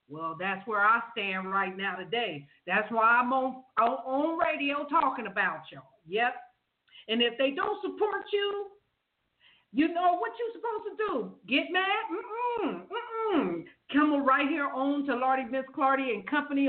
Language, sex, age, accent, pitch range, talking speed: English, female, 50-69, American, 225-325 Hz, 165 wpm